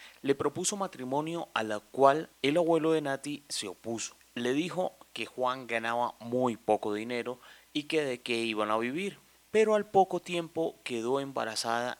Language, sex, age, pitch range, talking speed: Spanish, male, 30-49, 115-160 Hz, 165 wpm